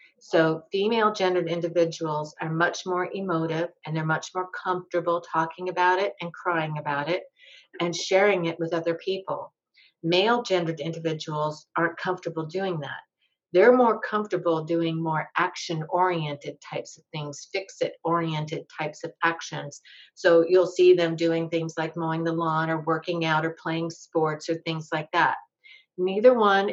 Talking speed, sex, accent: 160 wpm, female, American